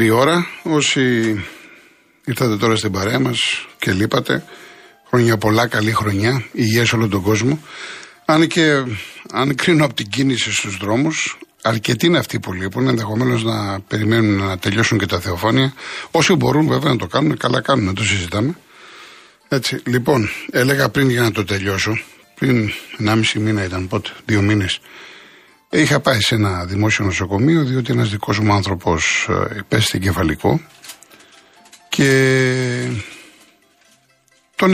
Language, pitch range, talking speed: Greek, 105-130 Hz, 140 wpm